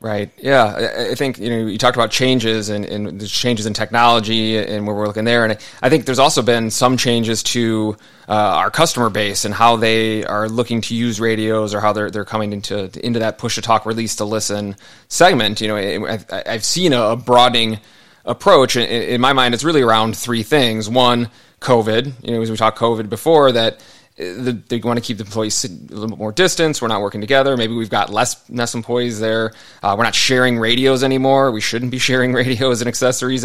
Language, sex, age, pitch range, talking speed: English, male, 20-39, 105-120 Hz, 215 wpm